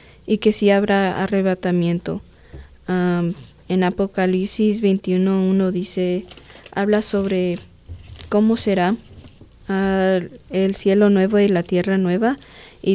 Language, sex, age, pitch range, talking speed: English, female, 20-39, 180-205 Hz, 115 wpm